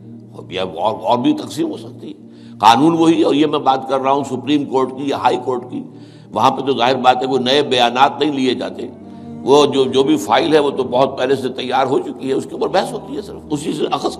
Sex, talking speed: male, 250 wpm